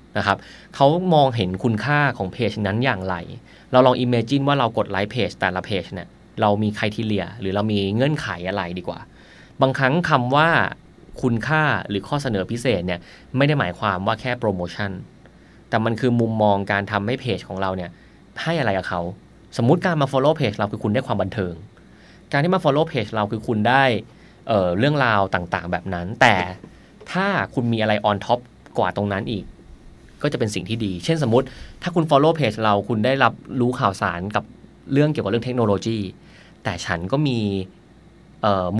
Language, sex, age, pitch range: Thai, male, 20-39, 105-140 Hz